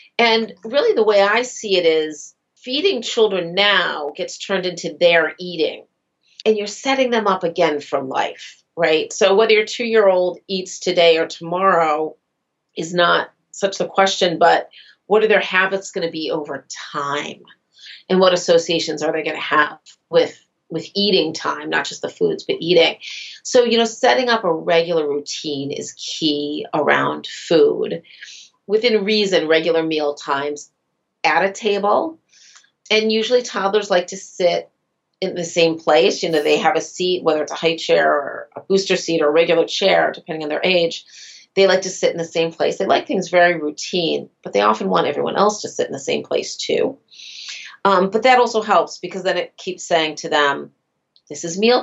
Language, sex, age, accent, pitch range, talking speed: English, female, 40-59, American, 160-215 Hz, 185 wpm